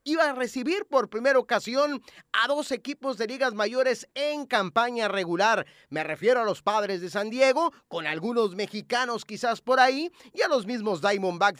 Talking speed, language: 175 wpm, Spanish